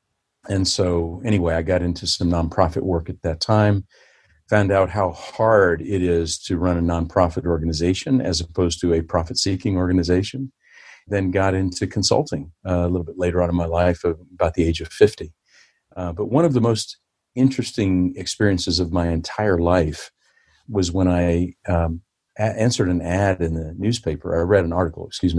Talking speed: 180 wpm